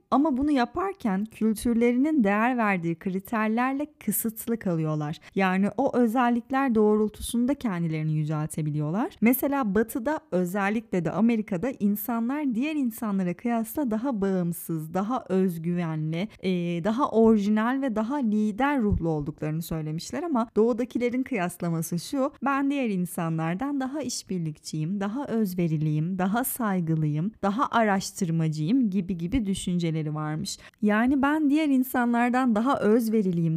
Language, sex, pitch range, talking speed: Turkish, female, 180-255 Hz, 110 wpm